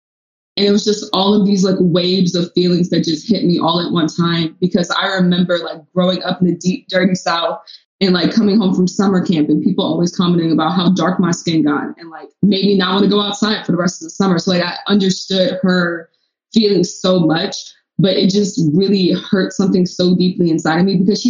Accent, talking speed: American, 235 wpm